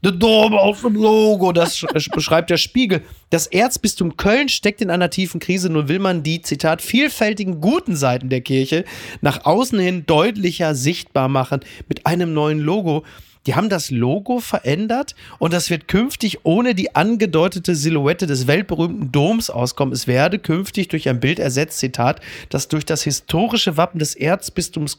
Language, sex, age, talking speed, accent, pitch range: German, male, 30-49, 165 wpm, German, 135-185 Hz